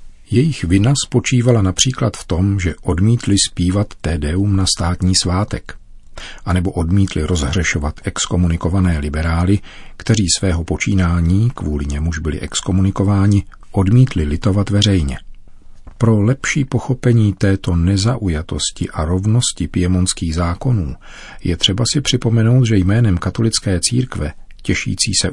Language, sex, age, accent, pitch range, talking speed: Czech, male, 40-59, native, 90-105 Hz, 110 wpm